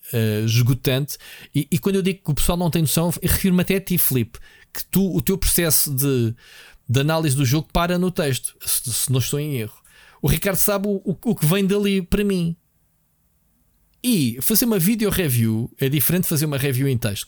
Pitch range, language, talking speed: 125-190 Hz, Portuguese, 215 wpm